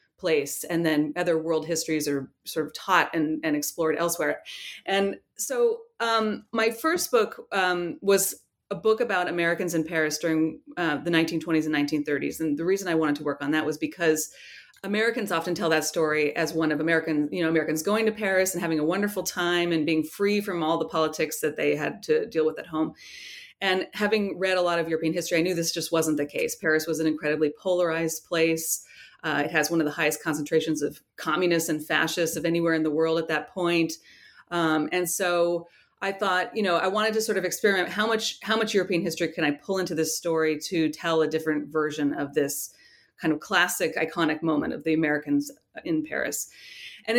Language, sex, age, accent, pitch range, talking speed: English, female, 30-49, American, 155-190 Hz, 210 wpm